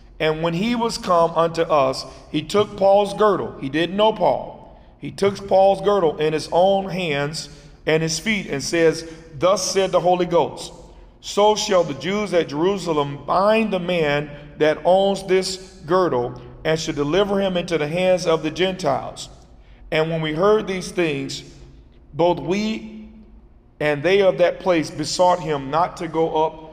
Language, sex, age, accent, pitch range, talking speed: English, male, 50-69, American, 155-190 Hz, 170 wpm